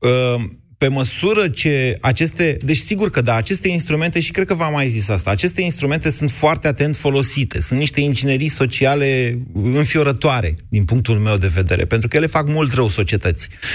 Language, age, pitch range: Romanian, 30-49, 120-160 Hz